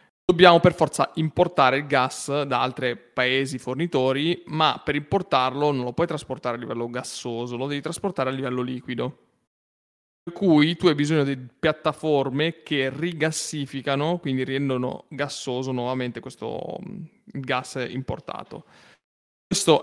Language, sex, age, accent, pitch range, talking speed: Italian, male, 30-49, native, 125-150 Hz, 130 wpm